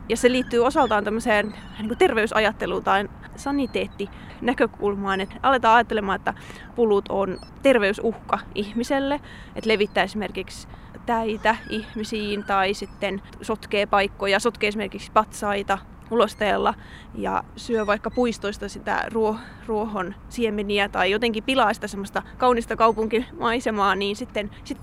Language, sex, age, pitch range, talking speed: Finnish, female, 20-39, 205-235 Hz, 110 wpm